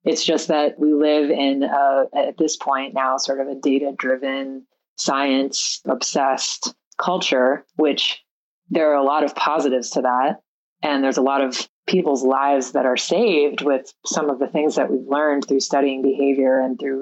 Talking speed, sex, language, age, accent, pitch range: 170 wpm, female, English, 20-39, American, 135-155 Hz